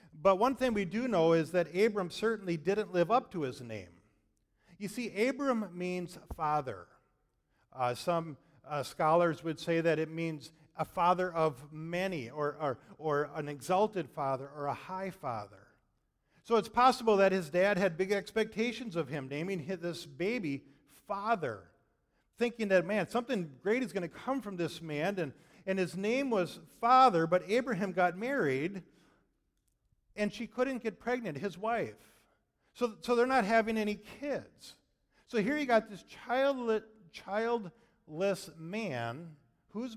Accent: American